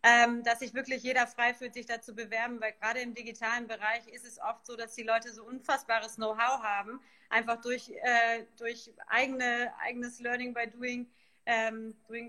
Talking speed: 185 wpm